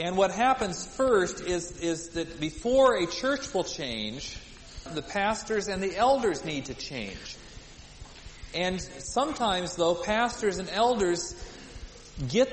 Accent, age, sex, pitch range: American, 40-59, male, 150-205 Hz